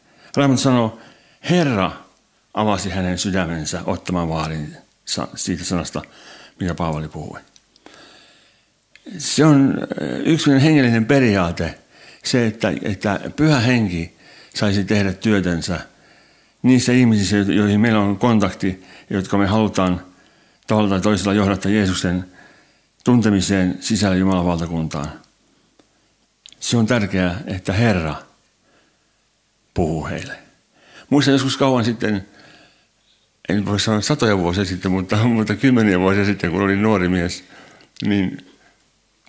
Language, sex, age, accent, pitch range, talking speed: Finnish, male, 60-79, native, 95-115 Hz, 105 wpm